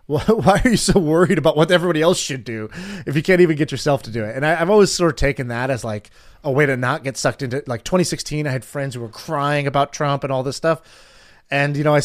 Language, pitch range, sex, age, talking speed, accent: English, 120-155 Hz, male, 20-39, 270 wpm, American